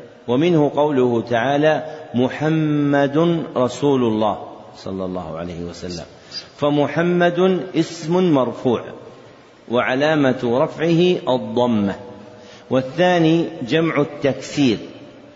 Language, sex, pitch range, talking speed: Arabic, male, 120-155 Hz, 75 wpm